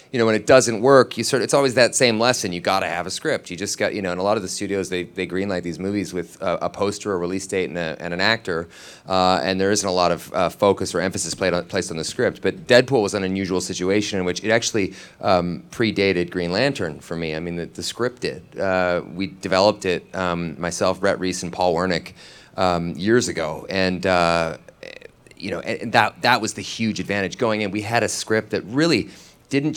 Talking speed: 240 wpm